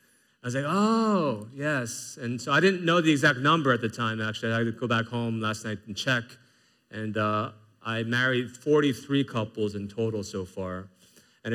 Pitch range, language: 110-140 Hz, English